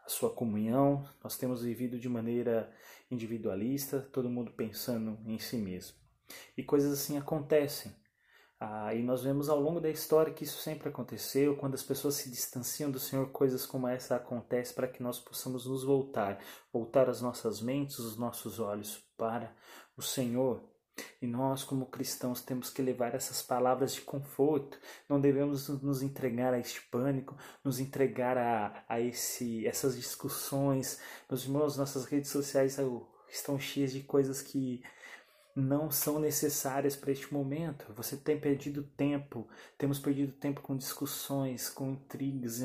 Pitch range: 120-140 Hz